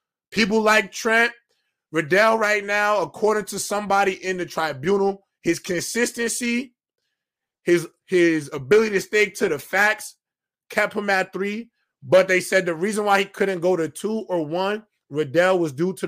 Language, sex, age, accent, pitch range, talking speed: English, male, 20-39, American, 155-200 Hz, 160 wpm